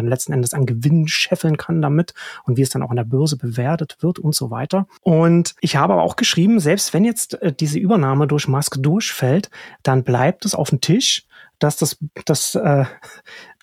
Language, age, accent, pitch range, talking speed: German, 30-49, German, 130-155 Hz, 205 wpm